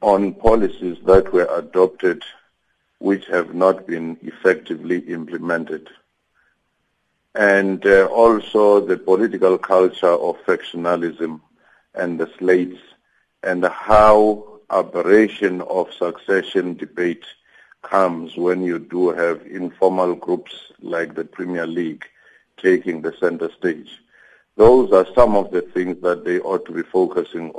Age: 50-69